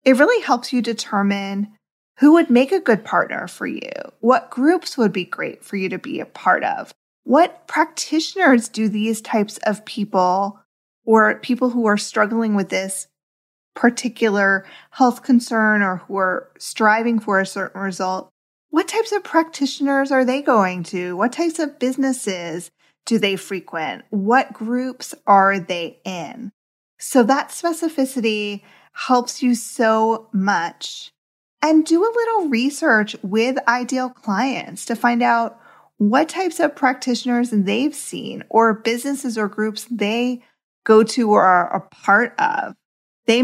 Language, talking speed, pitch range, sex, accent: English, 150 wpm, 205-265 Hz, female, American